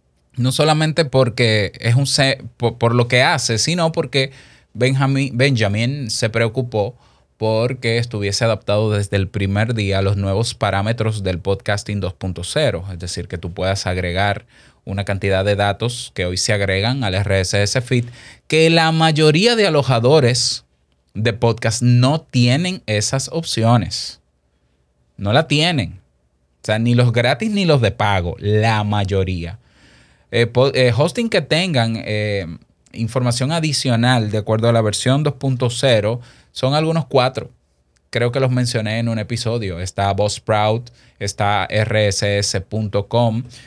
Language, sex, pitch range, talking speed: Spanish, male, 100-125 Hz, 135 wpm